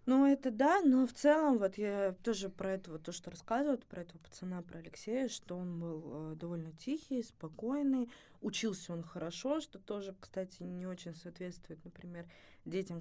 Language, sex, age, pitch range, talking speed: Russian, female, 20-39, 170-215 Hz, 170 wpm